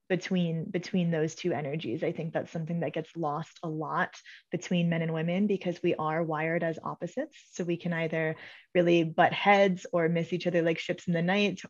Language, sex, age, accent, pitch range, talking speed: English, female, 20-39, American, 160-175 Hz, 205 wpm